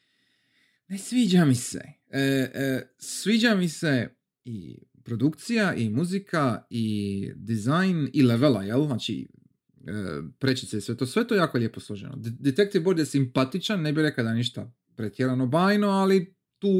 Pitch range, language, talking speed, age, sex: 120-180 Hz, Croatian, 145 wpm, 30-49, male